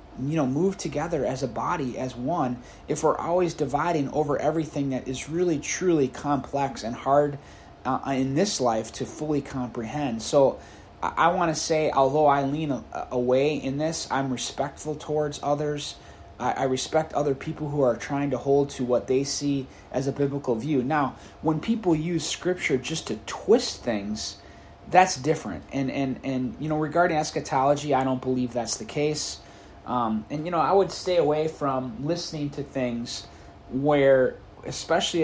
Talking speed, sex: 170 wpm, male